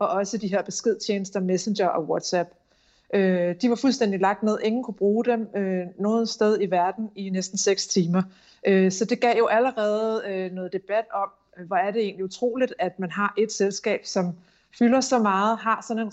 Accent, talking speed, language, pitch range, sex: native, 185 wpm, Danish, 190-225 Hz, female